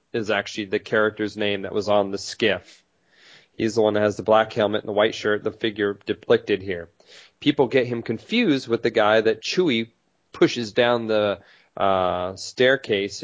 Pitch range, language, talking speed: 100-120 Hz, English, 180 wpm